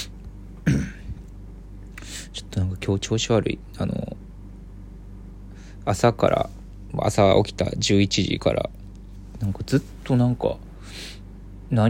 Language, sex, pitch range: Japanese, male, 95-100 Hz